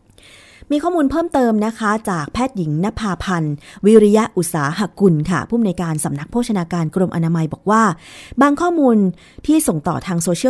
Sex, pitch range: female, 170-245 Hz